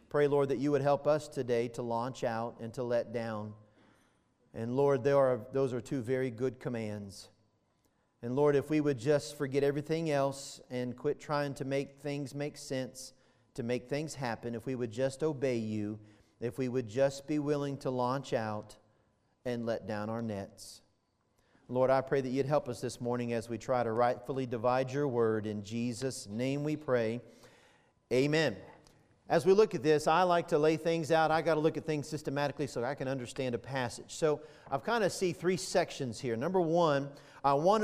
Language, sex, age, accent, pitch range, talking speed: English, male, 40-59, American, 120-155 Hz, 195 wpm